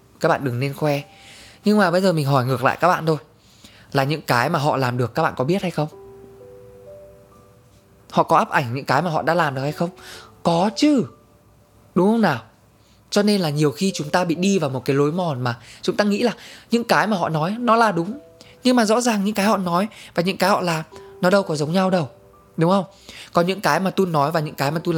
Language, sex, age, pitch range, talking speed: Vietnamese, male, 20-39, 130-180 Hz, 255 wpm